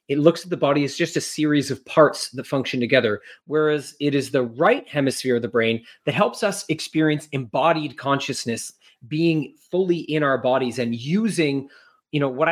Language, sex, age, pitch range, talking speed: English, male, 30-49, 130-165 Hz, 175 wpm